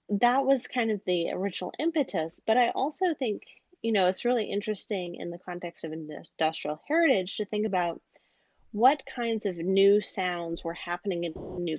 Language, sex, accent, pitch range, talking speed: English, female, American, 170-230 Hz, 175 wpm